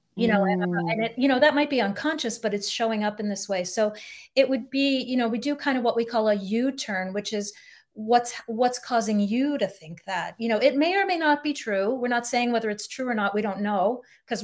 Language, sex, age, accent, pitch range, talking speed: English, female, 30-49, American, 195-235 Hz, 255 wpm